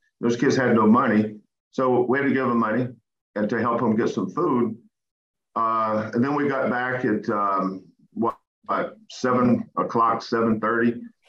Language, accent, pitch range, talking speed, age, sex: English, American, 105-125 Hz, 170 wpm, 50-69, male